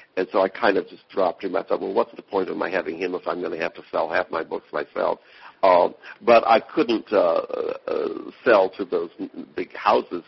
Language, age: English, 60-79